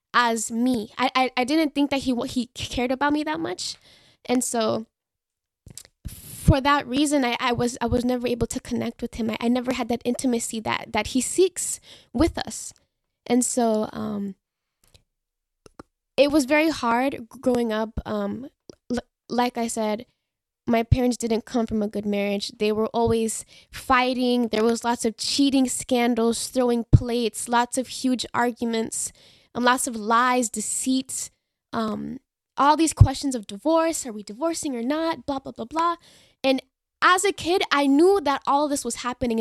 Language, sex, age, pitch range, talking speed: English, female, 10-29, 230-275 Hz, 170 wpm